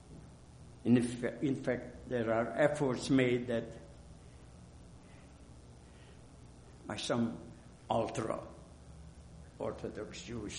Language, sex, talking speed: English, male, 75 wpm